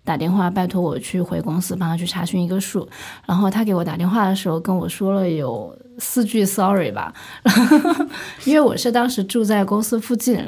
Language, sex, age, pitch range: Chinese, female, 20-39, 175-220 Hz